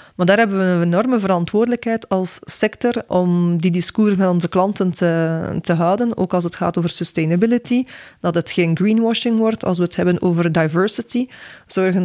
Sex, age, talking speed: female, 20-39, 180 wpm